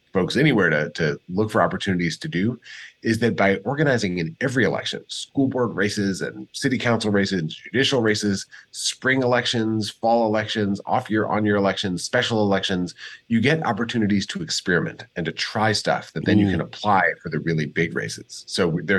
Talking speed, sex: 175 wpm, male